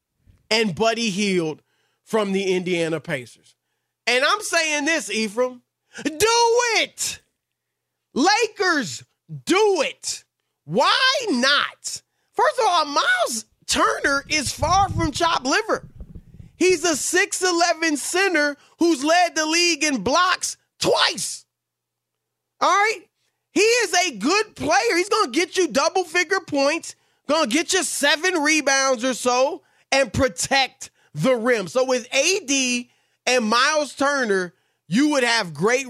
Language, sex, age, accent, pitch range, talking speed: English, male, 30-49, American, 225-340 Hz, 125 wpm